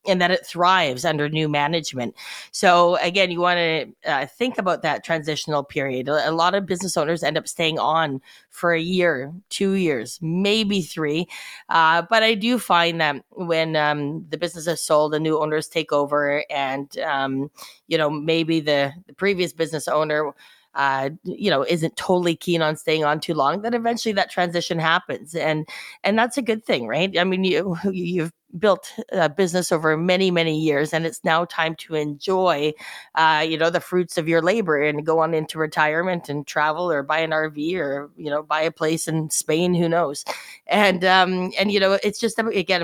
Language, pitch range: English, 155-180 Hz